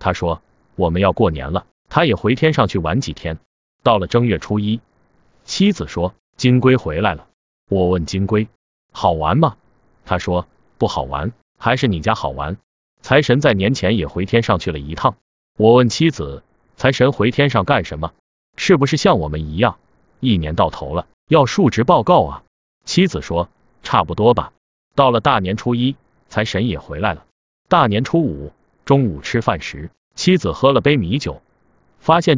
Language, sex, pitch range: Chinese, male, 90-130 Hz